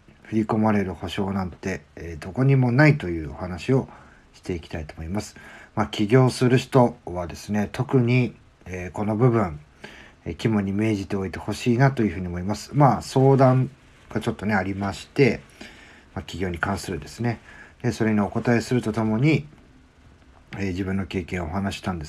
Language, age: Japanese, 40-59